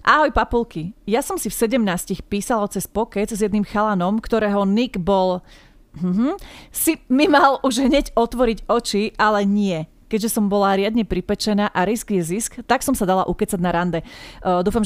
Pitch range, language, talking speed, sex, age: 185-235 Hz, Slovak, 180 wpm, female, 30-49